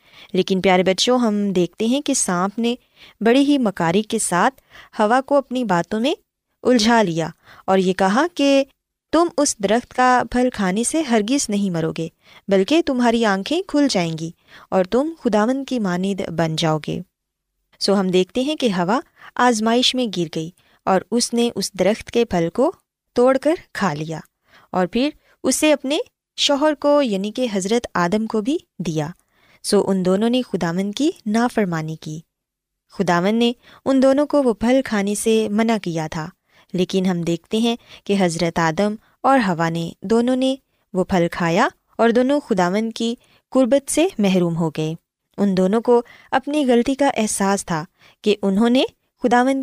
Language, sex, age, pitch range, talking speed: Urdu, female, 20-39, 185-250 Hz, 170 wpm